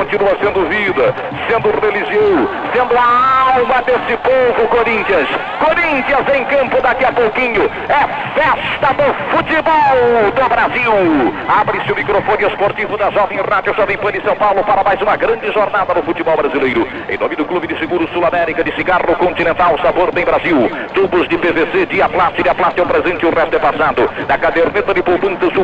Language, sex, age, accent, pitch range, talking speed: Portuguese, male, 60-79, Brazilian, 225-315 Hz, 175 wpm